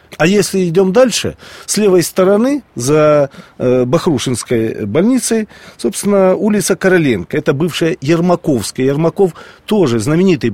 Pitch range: 135-190 Hz